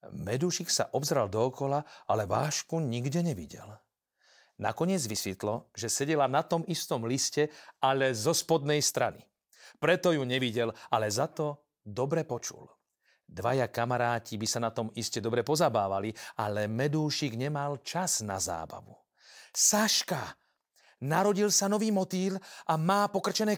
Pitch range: 115-170 Hz